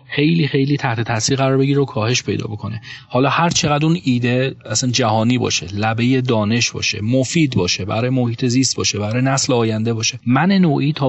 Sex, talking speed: male, 185 wpm